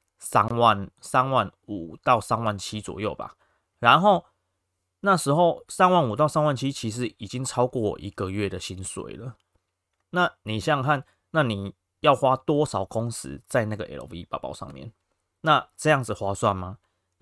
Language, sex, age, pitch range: Chinese, male, 30-49, 95-125 Hz